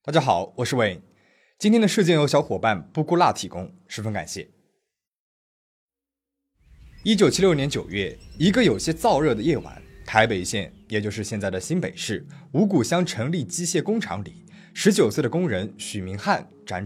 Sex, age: male, 20-39